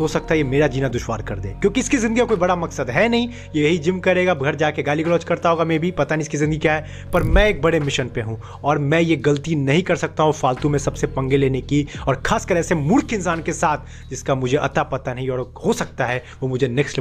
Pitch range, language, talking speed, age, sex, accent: 135-195 Hz, Hindi, 60 wpm, 30-49, male, native